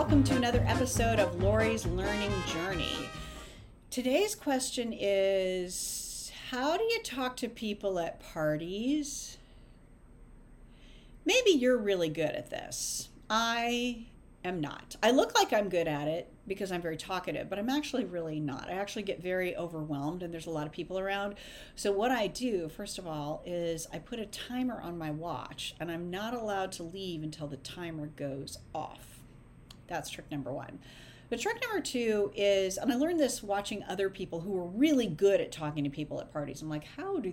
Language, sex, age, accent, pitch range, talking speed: English, female, 40-59, American, 165-250 Hz, 180 wpm